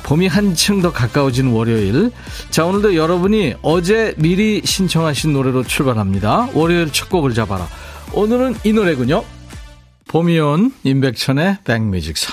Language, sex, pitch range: Korean, male, 110-165 Hz